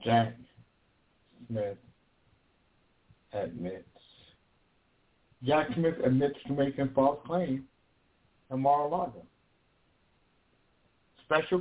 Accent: American